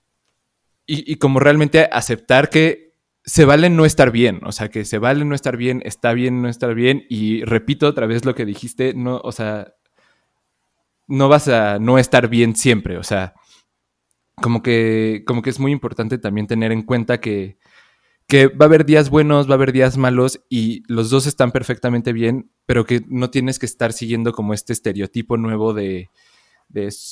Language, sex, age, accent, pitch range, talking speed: Spanish, male, 20-39, Mexican, 110-130 Hz, 190 wpm